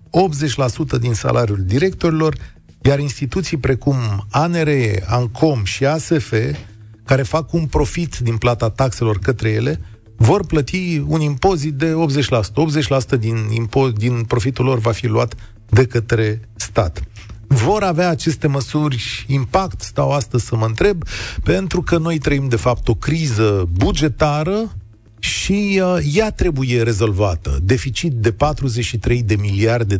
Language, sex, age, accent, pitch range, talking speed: Romanian, male, 40-59, native, 110-160 Hz, 130 wpm